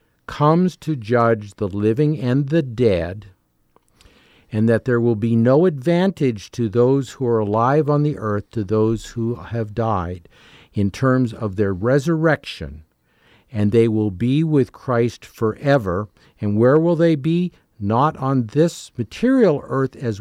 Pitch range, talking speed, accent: 105-135 Hz, 150 wpm, American